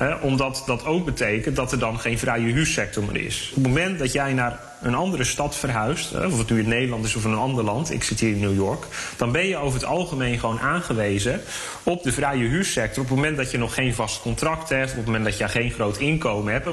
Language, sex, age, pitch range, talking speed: Dutch, male, 30-49, 115-140 Hz, 250 wpm